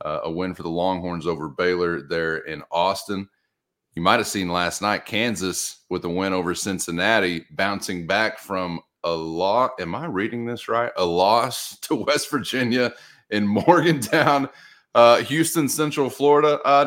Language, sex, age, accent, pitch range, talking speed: English, male, 30-49, American, 90-115 Hz, 160 wpm